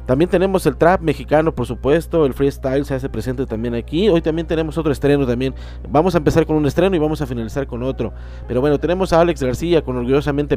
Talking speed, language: 225 wpm, Spanish